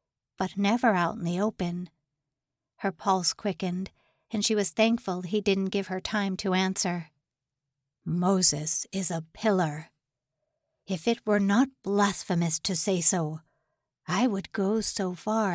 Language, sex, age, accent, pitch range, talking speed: English, female, 50-69, American, 170-220 Hz, 145 wpm